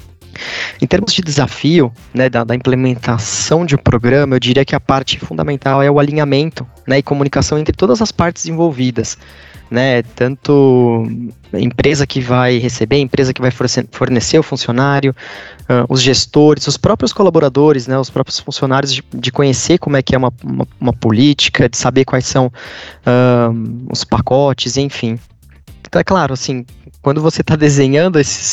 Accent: Brazilian